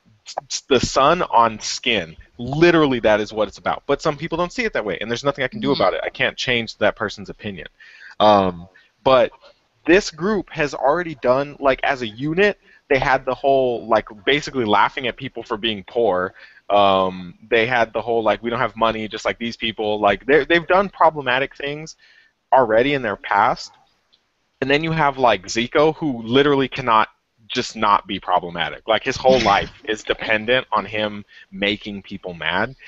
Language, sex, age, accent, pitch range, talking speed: English, male, 20-39, American, 105-150 Hz, 185 wpm